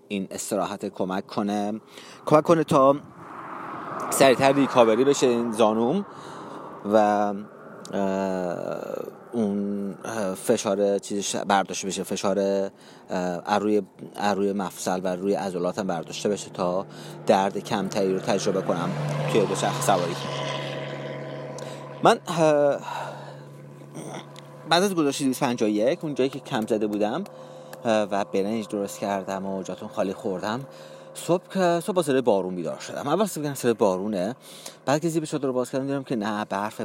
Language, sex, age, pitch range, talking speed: Persian, male, 30-49, 95-130 Hz, 125 wpm